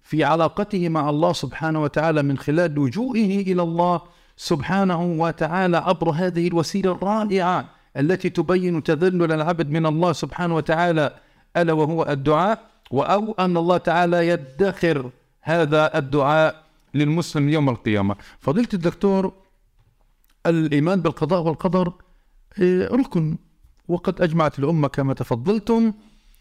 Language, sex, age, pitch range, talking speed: Arabic, male, 50-69, 130-175 Hz, 110 wpm